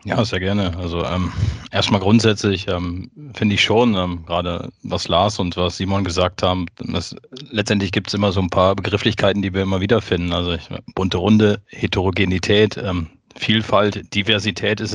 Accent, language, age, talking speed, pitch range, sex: German, German, 30-49, 175 wpm, 95-105 Hz, male